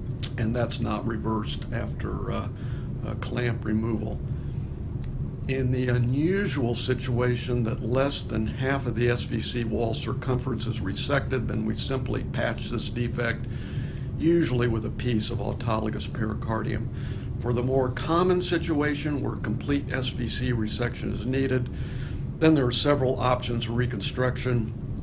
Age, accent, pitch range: 60-79, American, 115-130 Hz